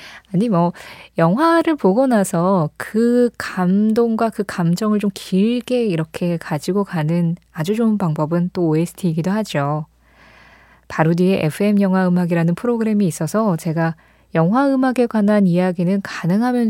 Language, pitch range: Korean, 170-225 Hz